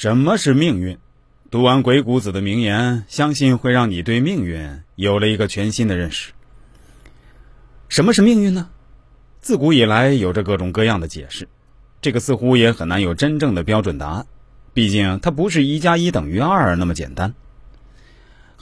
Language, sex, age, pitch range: Chinese, male, 30-49, 100-140 Hz